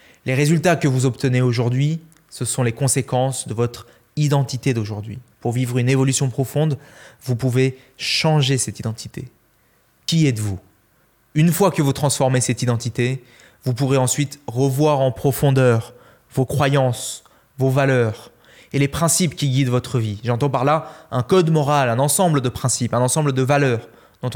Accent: French